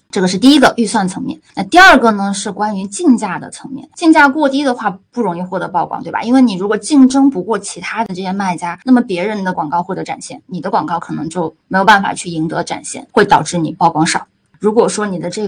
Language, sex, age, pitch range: Chinese, female, 20-39, 175-235 Hz